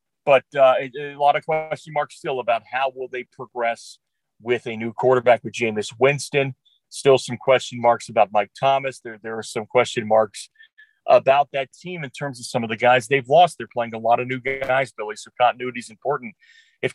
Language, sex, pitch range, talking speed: English, male, 125-175 Hz, 205 wpm